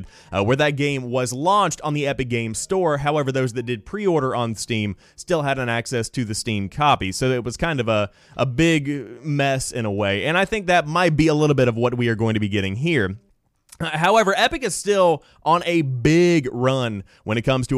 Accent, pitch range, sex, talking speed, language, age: American, 115-160 Hz, male, 230 wpm, English, 30-49